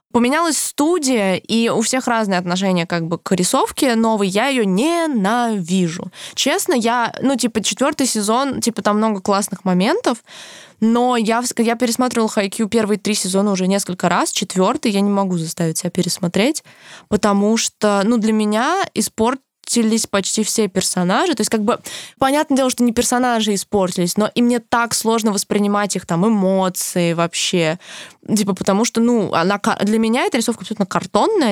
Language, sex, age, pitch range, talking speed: Russian, female, 20-39, 185-230 Hz, 165 wpm